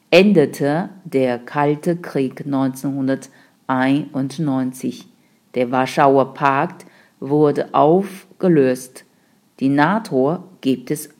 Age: 50-69